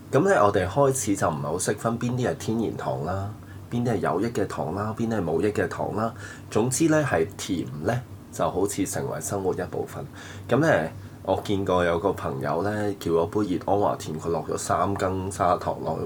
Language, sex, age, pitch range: Chinese, male, 20-39, 90-115 Hz